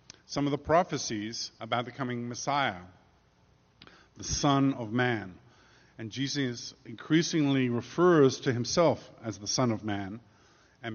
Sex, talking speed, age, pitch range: male, 130 wpm, 50-69, 110-140 Hz